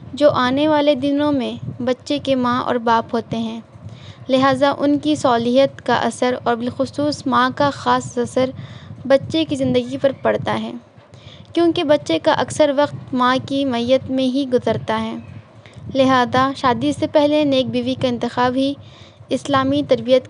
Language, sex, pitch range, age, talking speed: Urdu, female, 240-280 Hz, 20-39, 155 wpm